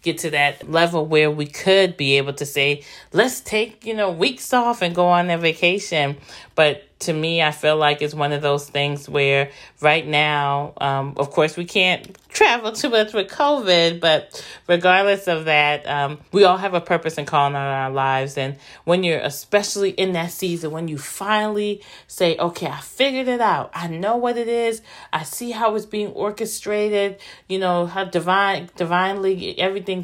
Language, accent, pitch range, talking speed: English, American, 145-185 Hz, 190 wpm